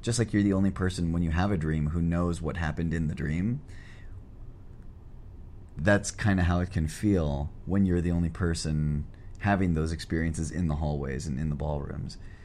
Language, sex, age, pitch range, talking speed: English, male, 30-49, 75-95 Hz, 195 wpm